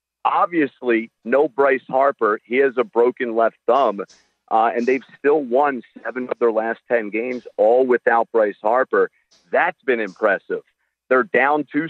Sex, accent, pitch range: male, American, 105-145 Hz